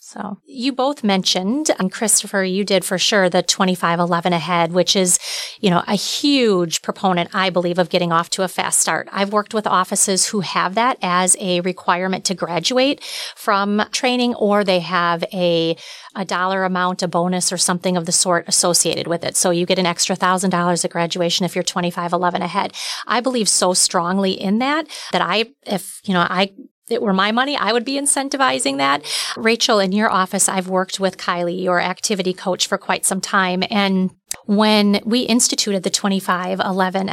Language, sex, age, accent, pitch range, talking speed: English, female, 30-49, American, 185-220 Hz, 185 wpm